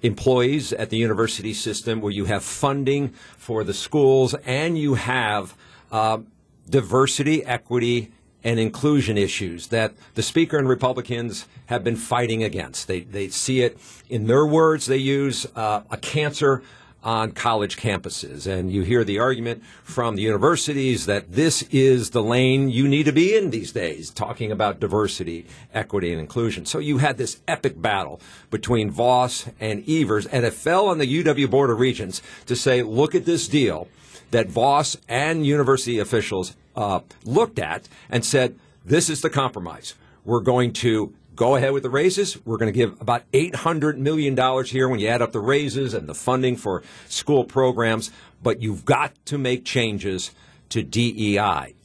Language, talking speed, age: English, 170 wpm, 50-69